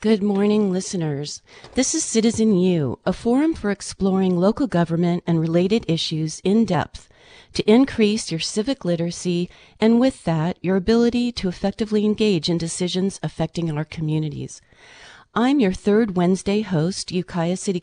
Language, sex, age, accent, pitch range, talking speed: English, female, 40-59, American, 170-220 Hz, 145 wpm